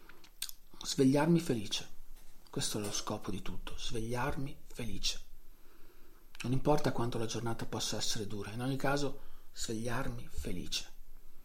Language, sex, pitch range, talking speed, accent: Italian, male, 110-135 Hz, 120 wpm, native